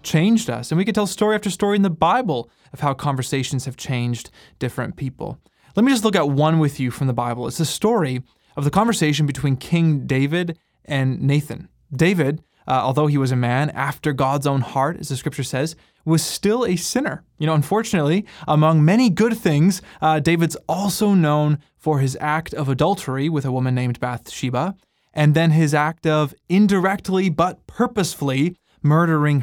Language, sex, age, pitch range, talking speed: English, male, 20-39, 135-175 Hz, 185 wpm